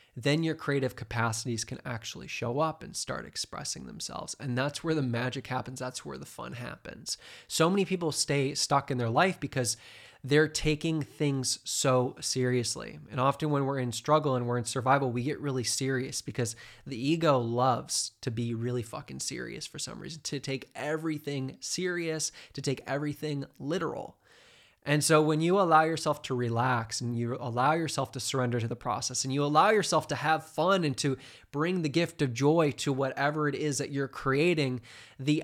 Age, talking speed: 20-39, 185 wpm